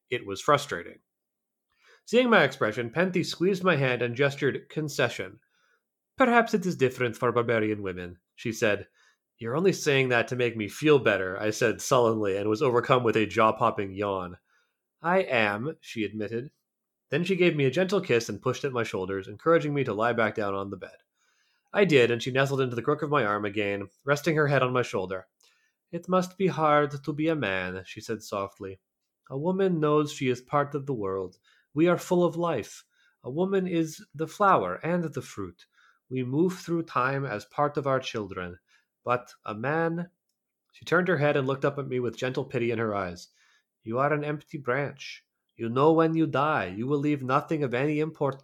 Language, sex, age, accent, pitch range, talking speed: English, male, 30-49, American, 110-160 Hz, 200 wpm